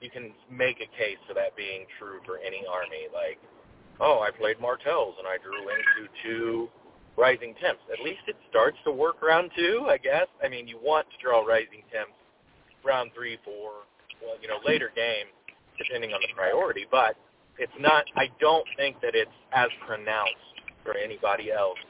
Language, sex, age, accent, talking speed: English, male, 30-49, American, 185 wpm